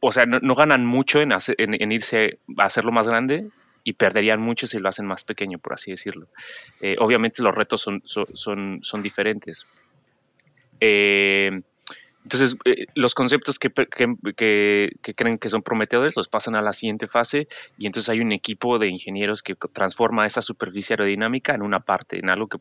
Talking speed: 185 wpm